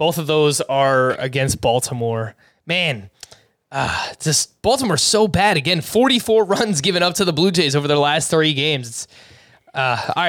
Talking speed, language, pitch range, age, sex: 170 wpm, English, 135-170 Hz, 20-39, male